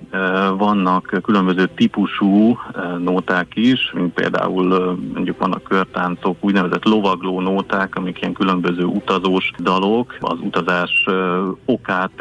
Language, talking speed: Hungarian, 105 wpm